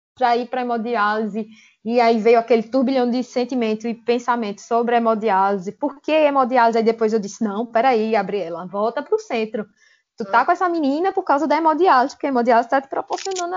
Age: 20-39